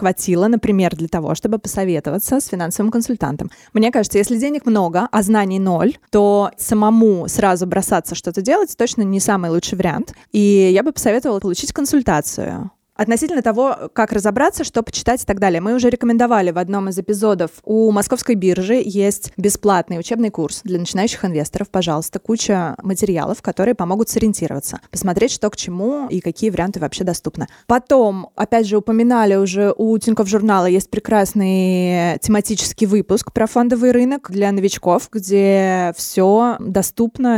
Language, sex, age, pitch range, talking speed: Russian, female, 20-39, 180-225 Hz, 155 wpm